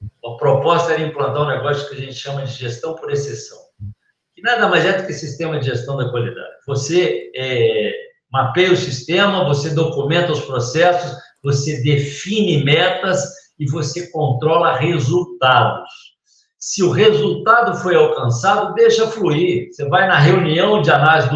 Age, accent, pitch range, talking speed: 60-79, Brazilian, 135-175 Hz, 155 wpm